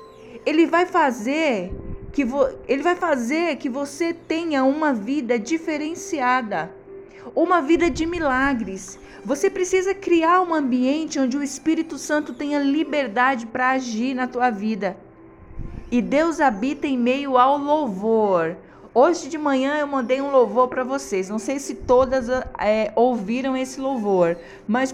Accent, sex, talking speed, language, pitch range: Brazilian, female, 130 wpm, Portuguese, 220-280 Hz